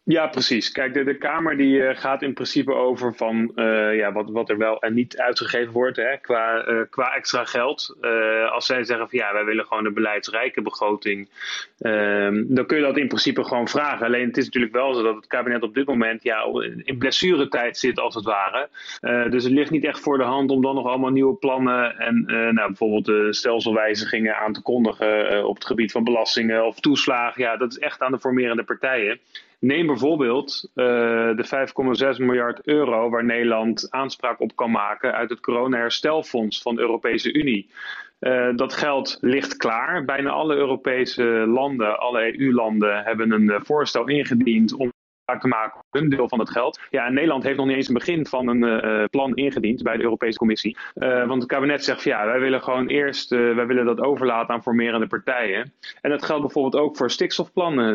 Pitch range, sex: 115-130 Hz, male